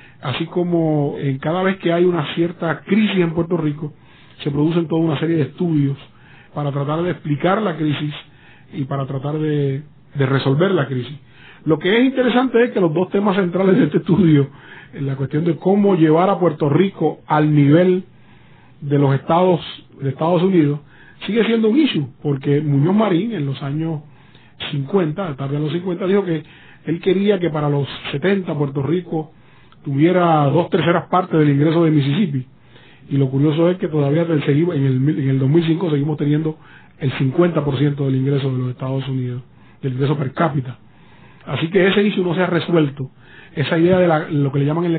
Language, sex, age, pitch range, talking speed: English, male, 40-59, 140-170 Hz, 185 wpm